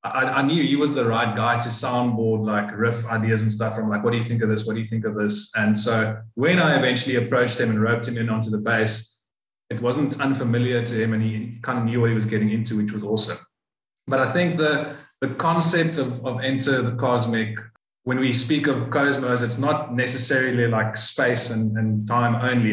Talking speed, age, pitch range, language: 225 wpm, 20-39, 110-125 Hz, English